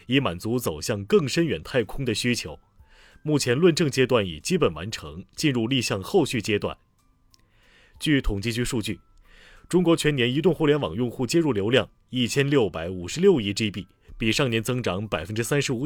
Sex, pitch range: male, 100-145 Hz